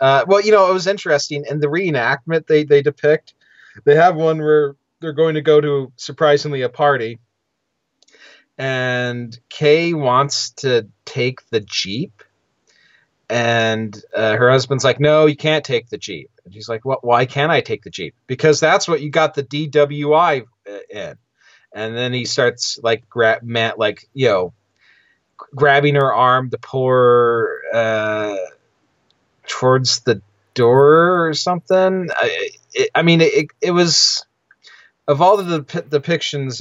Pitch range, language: 115-150 Hz, English